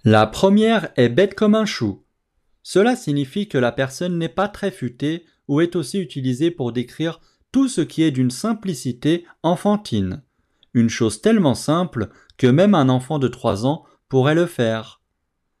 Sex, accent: male, French